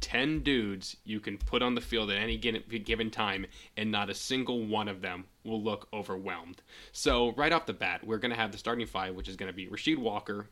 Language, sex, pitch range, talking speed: English, male, 100-125 Hz, 235 wpm